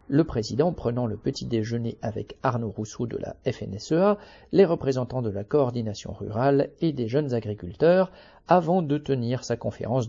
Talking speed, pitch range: 160 wpm, 115-160 Hz